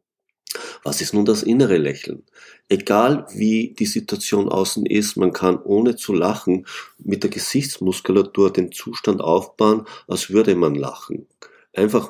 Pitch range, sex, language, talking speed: 100-120 Hz, male, German, 140 wpm